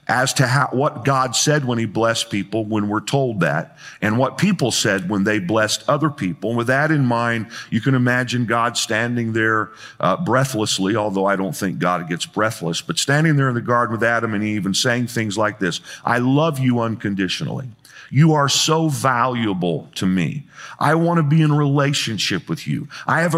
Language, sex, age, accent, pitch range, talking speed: English, male, 50-69, American, 120-160 Hz, 200 wpm